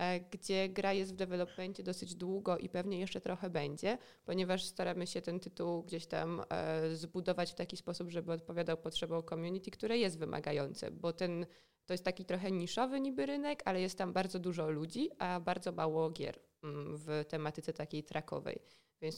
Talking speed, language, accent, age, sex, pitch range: 170 wpm, Polish, native, 20-39, female, 160-190 Hz